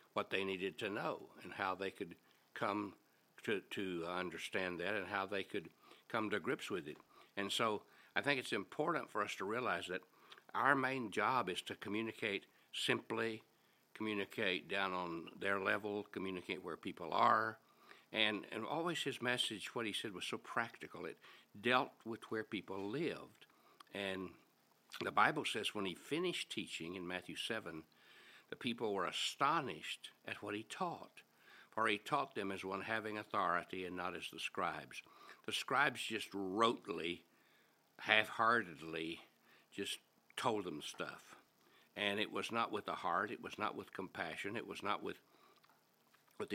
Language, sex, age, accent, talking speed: English, male, 60-79, American, 160 wpm